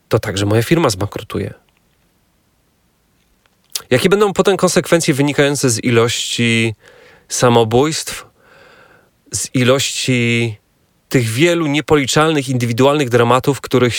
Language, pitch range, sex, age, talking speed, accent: Polish, 110-140 Hz, male, 30-49, 90 wpm, native